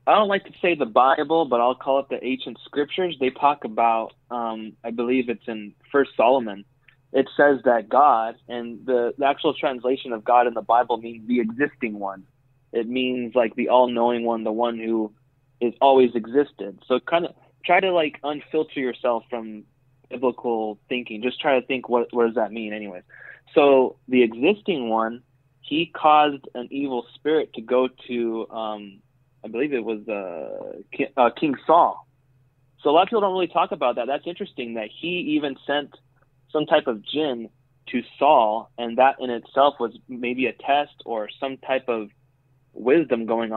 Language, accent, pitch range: English, American, 120-140 Hz